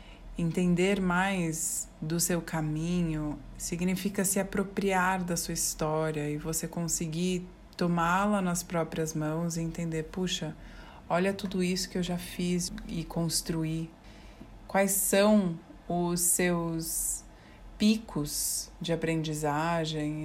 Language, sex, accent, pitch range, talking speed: Portuguese, female, Brazilian, 160-185 Hz, 110 wpm